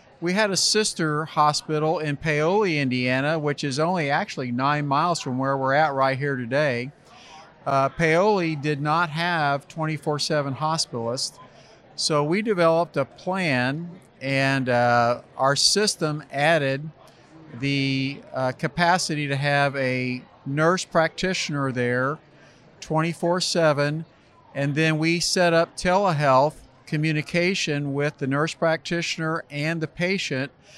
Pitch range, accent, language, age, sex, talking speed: 135-160 Hz, American, English, 50-69, male, 125 wpm